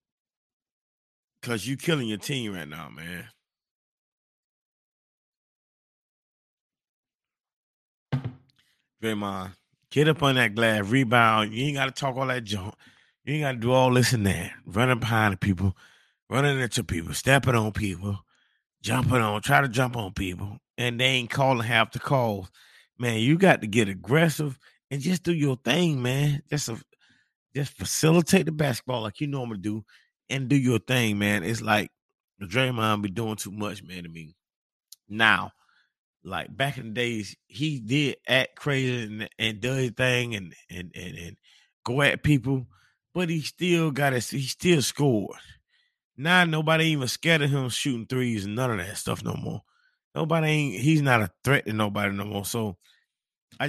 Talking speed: 170 wpm